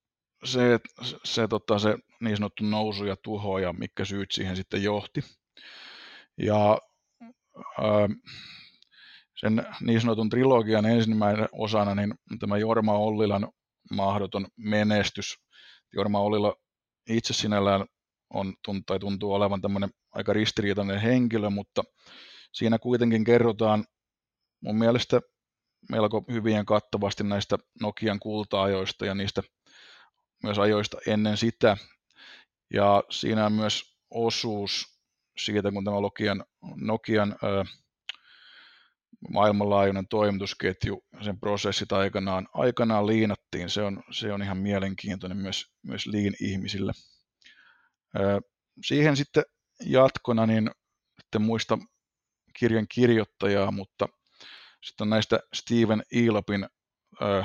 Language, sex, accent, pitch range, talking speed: Finnish, male, native, 100-110 Hz, 105 wpm